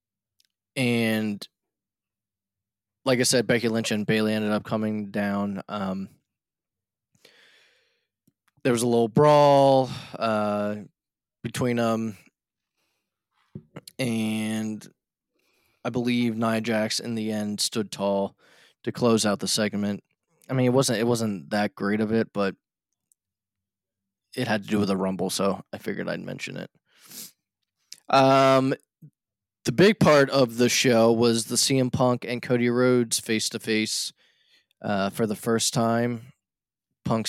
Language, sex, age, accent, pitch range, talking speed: English, male, 20-39, American, 105-125 Hz, 130 wpm